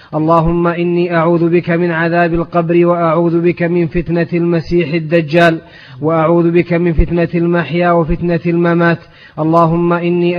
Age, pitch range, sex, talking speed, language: 30-49, 170-175 Hz, male, 125 wpm, Arabic